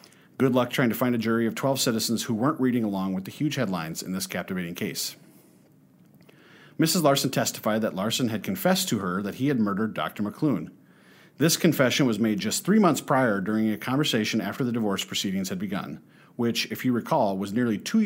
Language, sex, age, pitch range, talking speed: English, male, 40-59, 105-140 Hz, 205 wpm